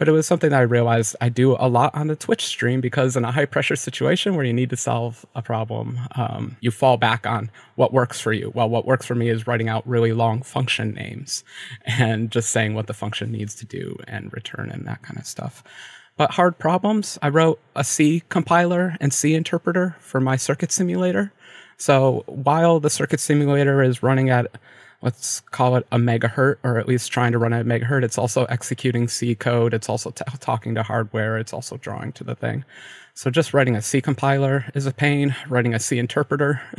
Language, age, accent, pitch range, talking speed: English, 30-49, American, 115-140 Hz, 215 wpm